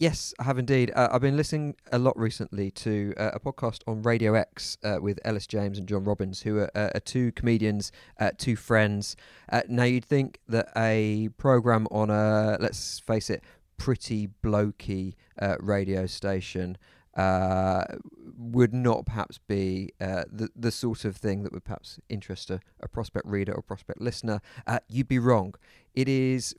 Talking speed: 180 wpm